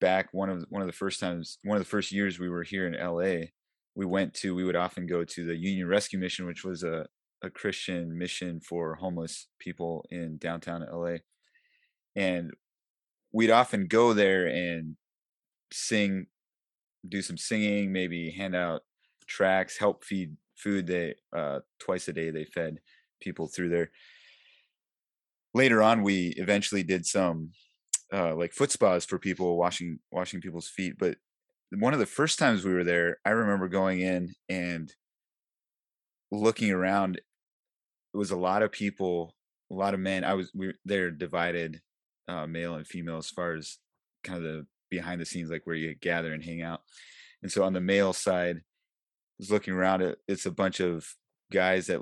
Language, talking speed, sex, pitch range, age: English, 180 wpm, male, 85-95 Hz, 30-49